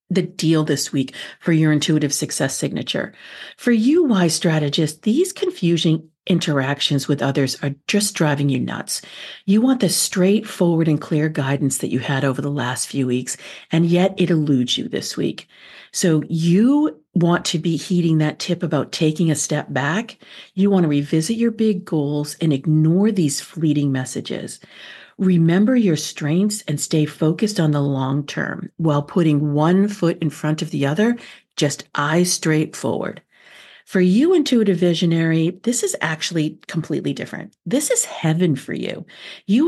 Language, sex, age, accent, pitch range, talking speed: English, female, 50-69, American, 155-195 Hz, 165 wpm